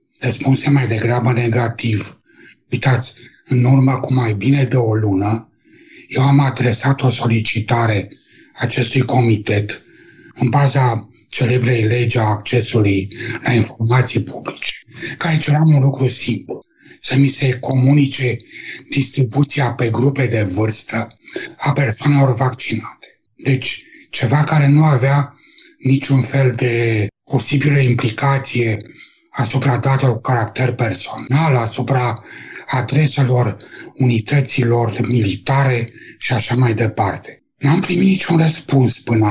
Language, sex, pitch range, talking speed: Romanian, male, 120-140 Hz, 110 wpm